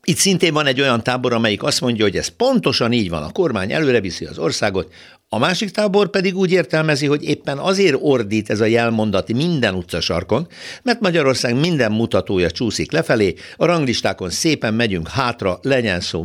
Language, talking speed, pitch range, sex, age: Hungarian, 175 wpm, 95-140 Hz, male, 60-79